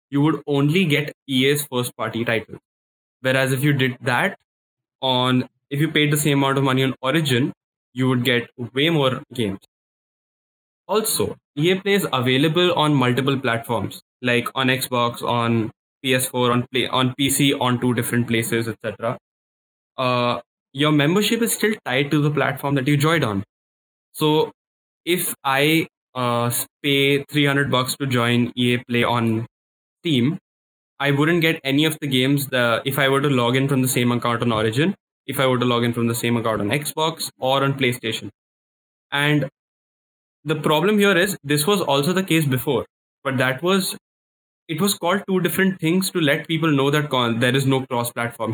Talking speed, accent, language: 180 wpm, Indian, English